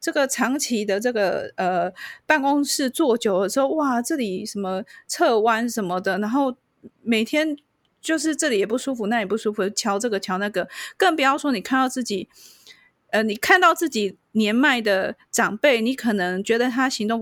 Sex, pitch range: female, 195-260 Hz